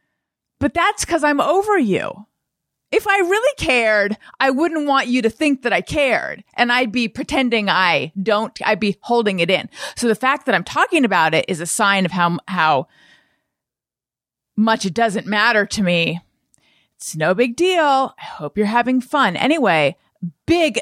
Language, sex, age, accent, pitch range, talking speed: English, female, 30-49, American, 175-250 Hz, 175 wpm